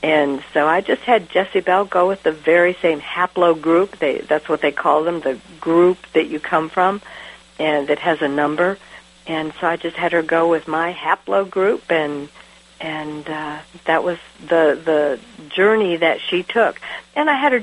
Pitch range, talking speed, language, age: 145-180 Hz, 185 wpm, English, 60-79